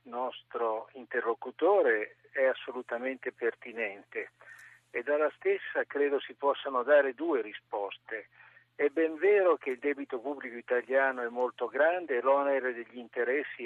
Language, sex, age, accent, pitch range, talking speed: Italian, male, 60-79, native, 125-180 Hz, 125 wpm